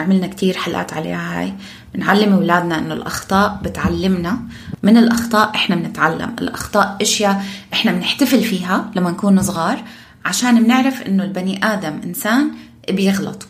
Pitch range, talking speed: 180-230 Hz, 130 wpm